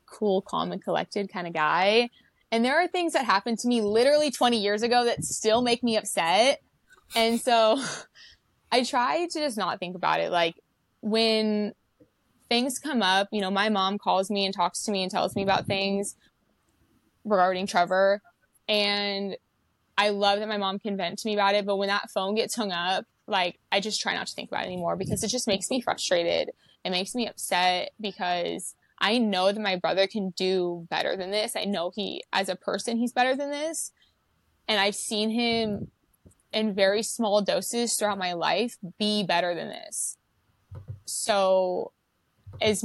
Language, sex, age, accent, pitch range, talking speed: English, female, 20-39, American, 190-225 Hz, 185 wpm